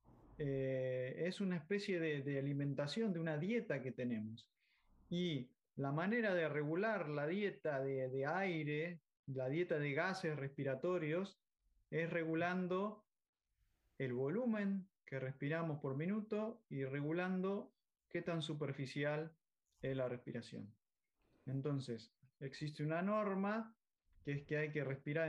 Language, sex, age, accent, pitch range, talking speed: Spanish, male, 20-39, Argentinian, 135-185 Hz, 125 wpm